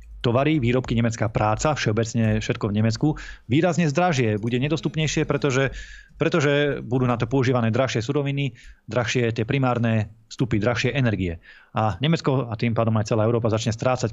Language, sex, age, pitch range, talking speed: Slovak, male, 20-39, 110-130 Hz, 155 wpm